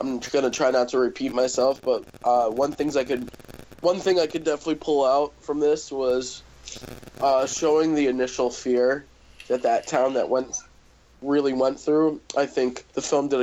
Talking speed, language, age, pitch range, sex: 185 wpm, English, 20-39, 125-150 Hz, male